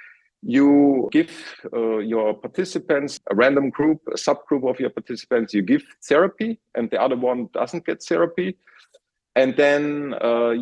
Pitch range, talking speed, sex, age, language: 115-150 Hz, 145 wpm, male, 50-69, English